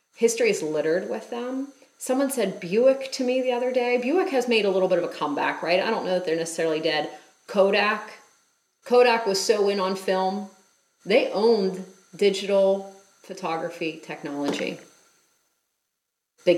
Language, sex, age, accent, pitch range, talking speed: English, female, 30-49, American, 185-255 Hz, 155 wpm